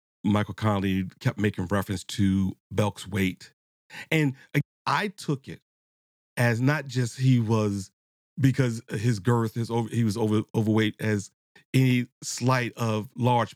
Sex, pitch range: male, 105-135 Hz